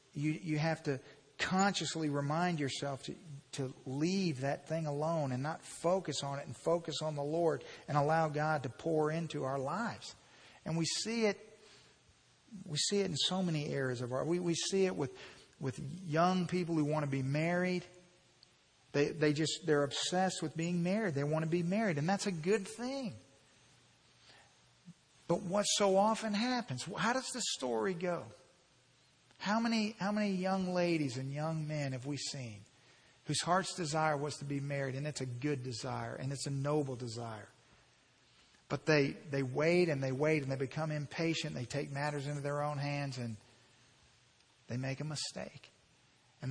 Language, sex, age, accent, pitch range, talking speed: English, male, 50-69, American, 140-175 Hz, 180 wpm